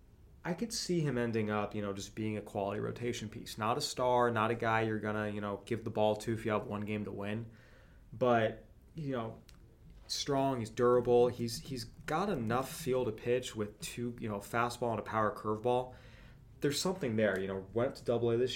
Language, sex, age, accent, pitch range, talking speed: English, male, 20-39, American, 105-125 Hz, 215 wpm